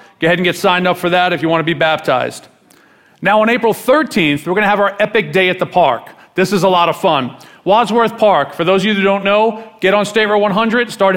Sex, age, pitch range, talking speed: male, 40-59, 175-210 Hz, 265 wpm